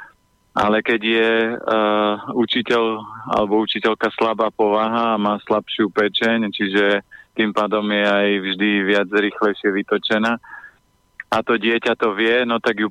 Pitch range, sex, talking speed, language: 105-110 Hz, male, 140 wpm, Slovak